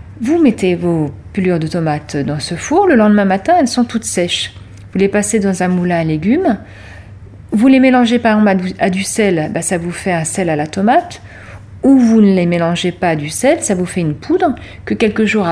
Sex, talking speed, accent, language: female, 220 wpm, French, English